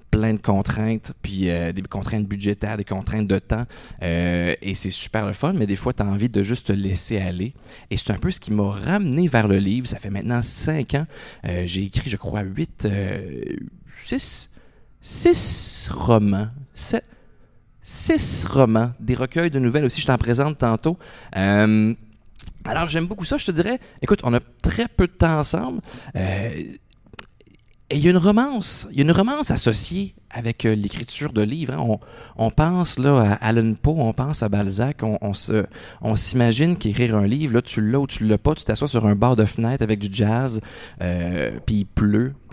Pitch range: 105-135 Hz